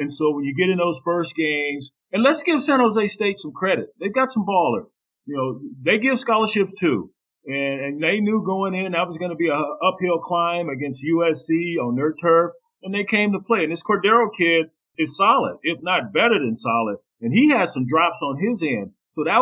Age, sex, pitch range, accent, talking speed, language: 40-59, male, 140-175 Hz, American, 225 wpm, English